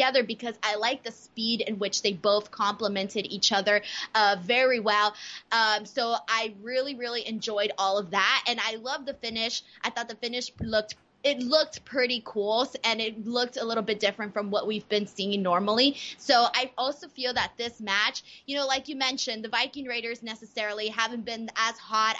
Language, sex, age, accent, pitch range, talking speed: English, female, 20-39, American, 210-260 Hz, 190 wpm